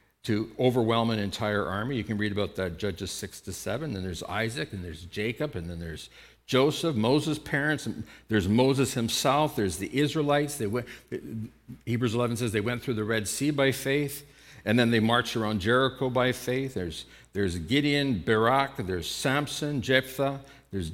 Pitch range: 110-135 Hz